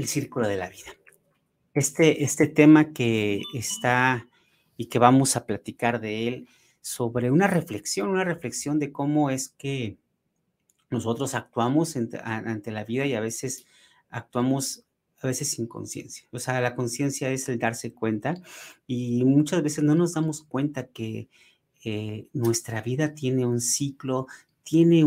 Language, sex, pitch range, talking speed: Spanish, male, 115-145 Hz, 150 wpm